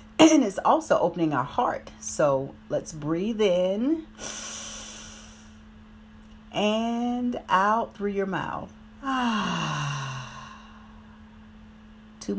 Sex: female